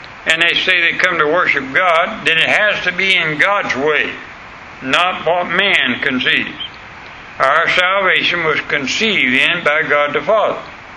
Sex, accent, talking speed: male, American, 160 wpm